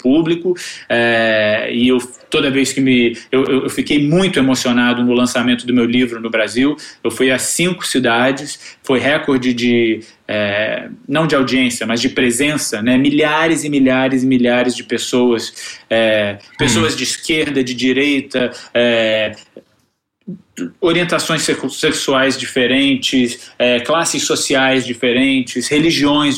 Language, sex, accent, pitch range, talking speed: Portuguese, male, Brazilian, 125-150 Hz, 130 wpm